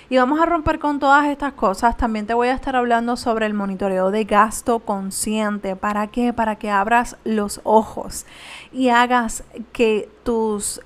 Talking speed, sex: 170 wpm, female